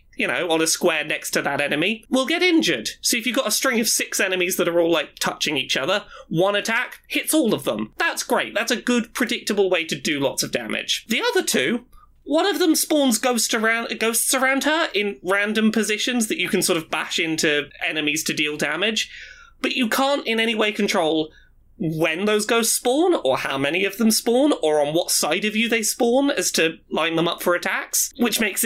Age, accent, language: 20-39, British, English